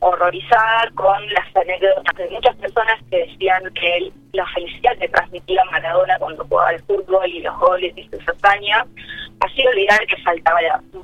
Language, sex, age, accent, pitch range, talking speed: English, female, 20-39, Argentinian, 180-215 Hz, 180 wpm